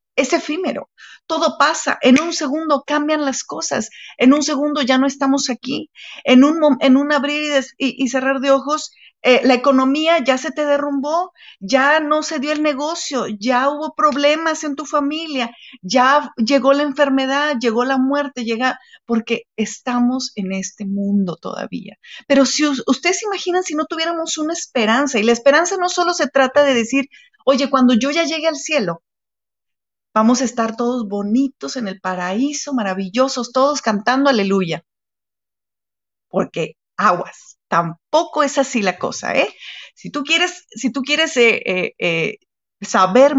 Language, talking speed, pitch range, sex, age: Spanish, 165 wpm, 225-300 Hz, female, 40-59